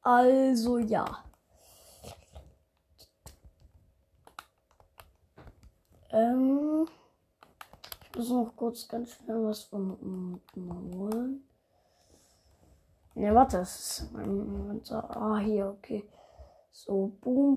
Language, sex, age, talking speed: German, female, 20-39, 90 wpm